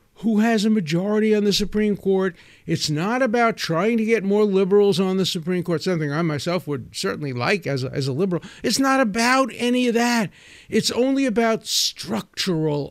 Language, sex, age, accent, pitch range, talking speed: English, male, 50-69, American, 185-240 Hz, 185 wpm